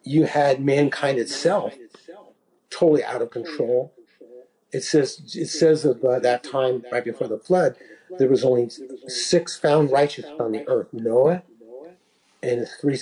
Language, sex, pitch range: English, male, 130-175 Hz